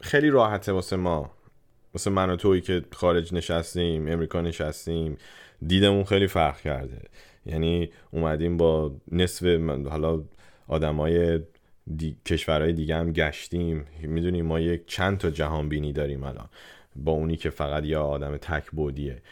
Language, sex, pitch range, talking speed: Persian, male, 80-95 Hz, 140 wpm